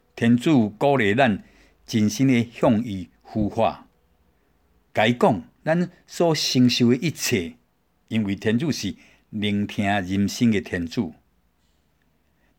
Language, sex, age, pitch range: Chinese, male, 60-79, 100-140 Hz